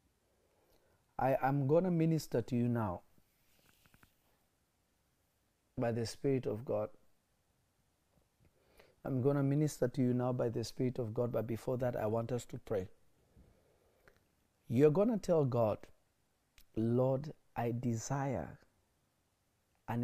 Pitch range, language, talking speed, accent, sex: 110-150 Hz, English, 125 wpm, South African, male